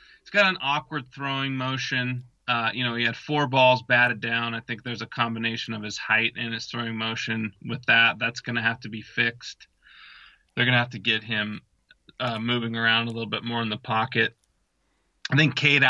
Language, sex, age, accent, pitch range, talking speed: English, male, 30-49, American, 115-135 Hz, 210 wpm